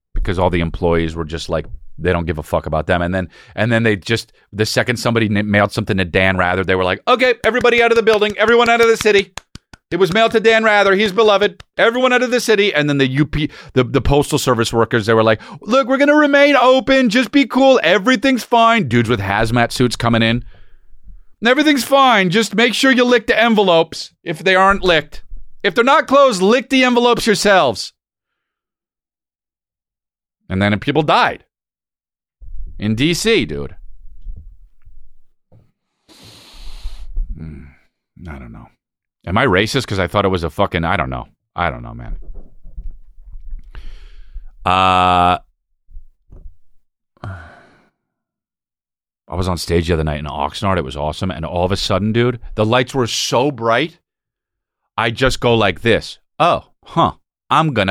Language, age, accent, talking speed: English, 40-59, American, 170 wpm